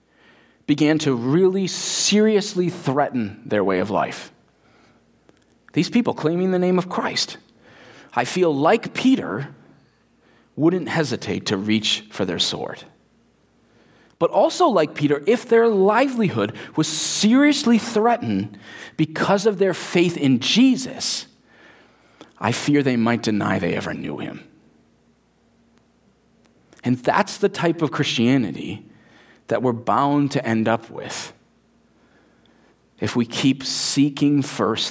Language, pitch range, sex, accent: English, 130-195 Hz, male, American